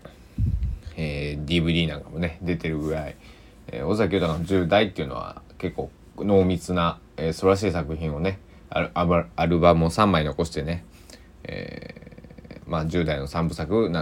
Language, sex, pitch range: Japanese, male, 80-110 Hz